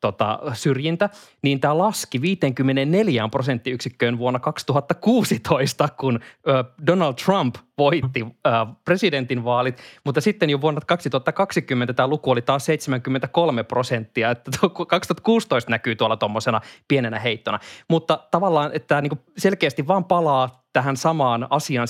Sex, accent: male, native